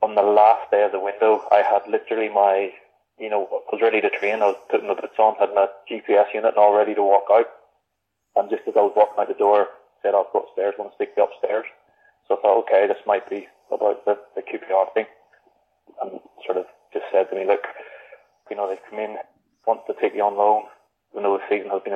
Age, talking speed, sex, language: 20-39, 250 wpm, male, English